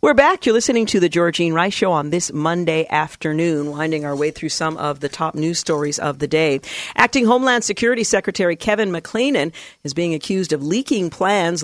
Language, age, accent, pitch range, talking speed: English, 50-69, American, 155-190 Hz, 195 wpm